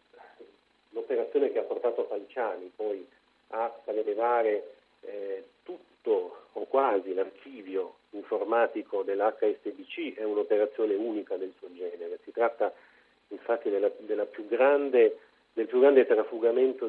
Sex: male